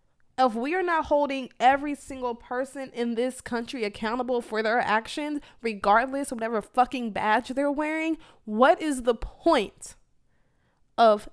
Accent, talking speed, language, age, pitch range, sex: American, 145 wpm, English, 20-39, 215-285 Hz, female